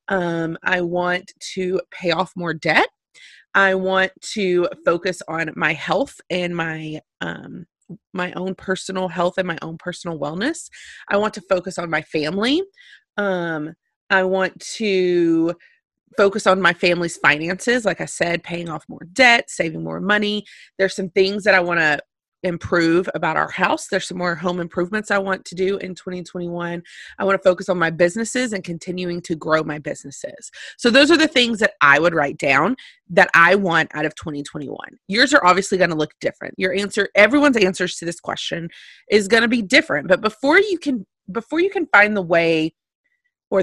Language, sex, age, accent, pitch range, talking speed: English, female, 30-49, American, 170-225 Hz, 185 wpm